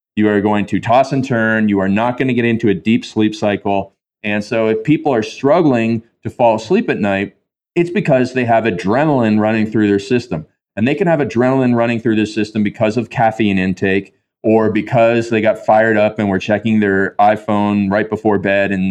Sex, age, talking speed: male, 30-49, 210 wpm